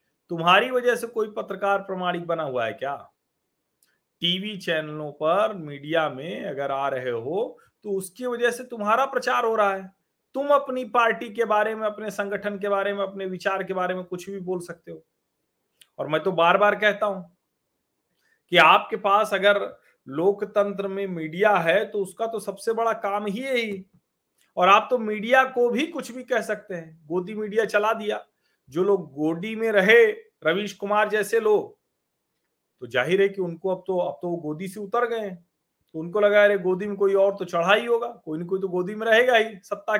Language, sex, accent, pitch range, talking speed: Hindi, male, native, 180-225 Hz, 195 wpm